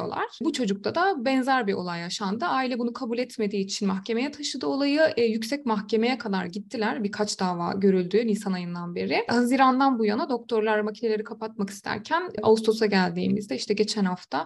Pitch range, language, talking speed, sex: 195-225 Hz, Turkish, 160 wpm, female